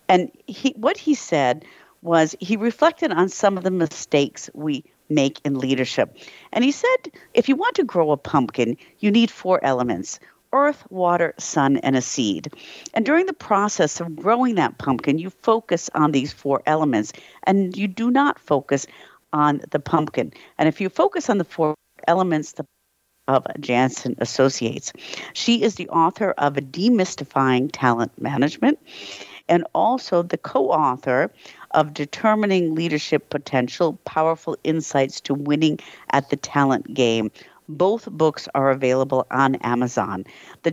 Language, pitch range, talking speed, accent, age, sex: English, 140-195 Hz, 150 wpm, American, 50-69, female